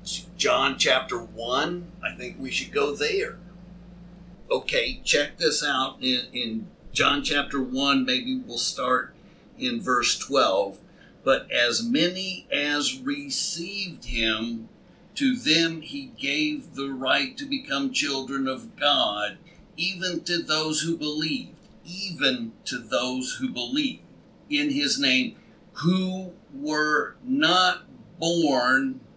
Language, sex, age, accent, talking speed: English, male, 50-69, American, 120 wpm